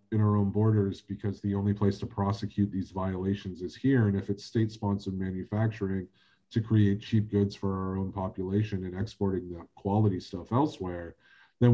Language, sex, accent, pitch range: English, male, American, 100-115 Hz